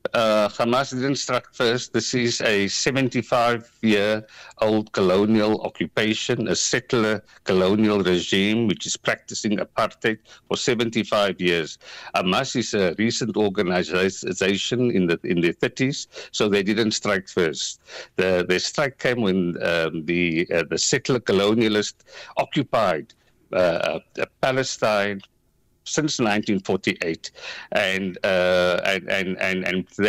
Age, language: 60-79, English